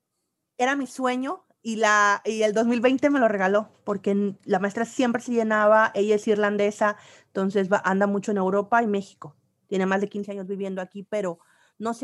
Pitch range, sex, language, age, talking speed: 195-230 Hz, female, Spanish, 30-49, 185 wpm